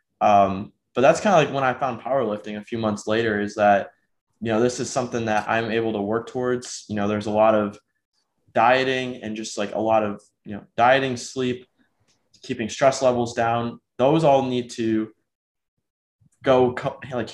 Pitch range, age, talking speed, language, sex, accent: 105-120 Hz, 20-39, 185 wpm, English, male, American